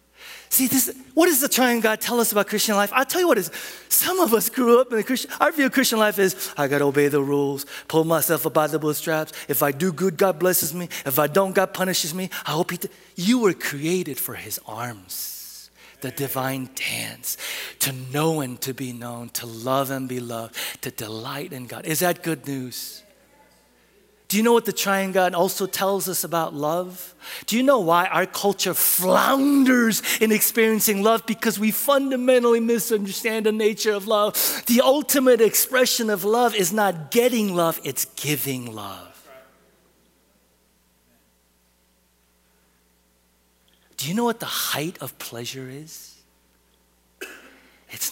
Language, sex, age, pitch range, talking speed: English, male, 30-49, 130-220 Hz, 170 wpm